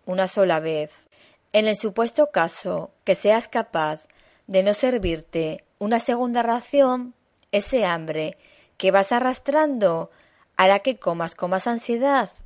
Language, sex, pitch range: Spanish, female, 170-245 Hz